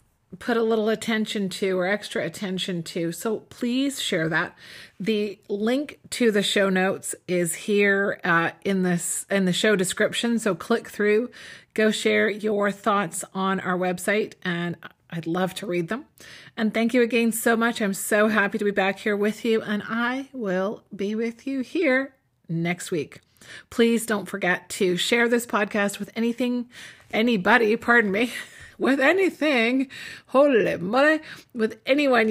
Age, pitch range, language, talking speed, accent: 30-49, 185-230 Hz, English, 160 wpm, American